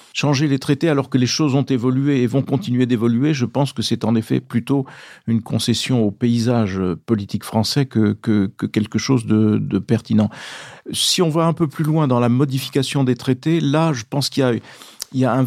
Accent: French